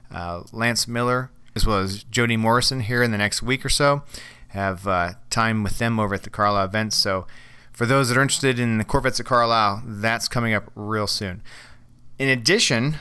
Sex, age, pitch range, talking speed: male, 40-59, 105-125 Hz, 200 wpm